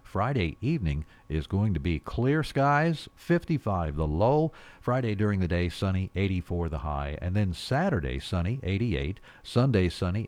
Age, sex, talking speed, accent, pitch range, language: 50-69, male, 150 wpm, American, 85-120 Hz, English